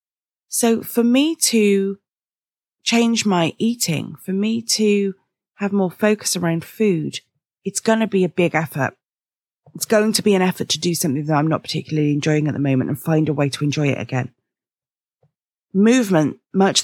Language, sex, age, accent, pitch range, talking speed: English, female, 30-49, British, 155-215 Hz, 175 wpm